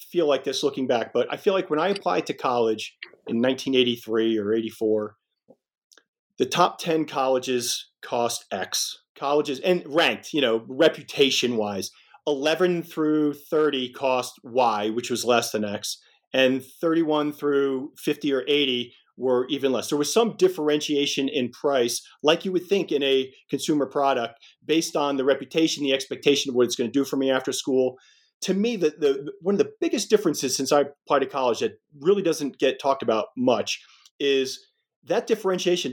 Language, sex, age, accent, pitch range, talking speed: English, male, 40-59, American, 130-165 Hz, 175 wpm